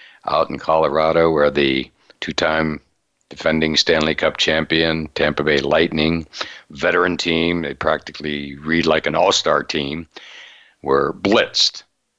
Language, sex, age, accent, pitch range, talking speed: English, male, 60-79, American, 70-80 Hz, 130 wpm